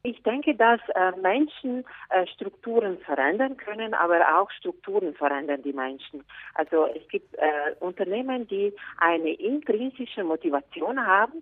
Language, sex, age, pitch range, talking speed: German, female, 40-59, 150-220 Hz, 130 wpm